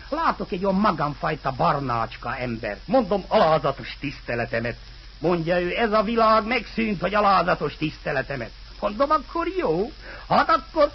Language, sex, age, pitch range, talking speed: Hungarian, male, 60-79, 130-215 Hz, 125 wpm